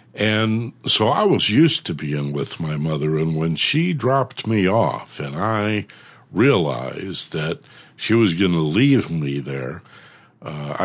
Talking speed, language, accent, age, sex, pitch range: 155 wpm, English, American, 60-79, male, 85-120 Hz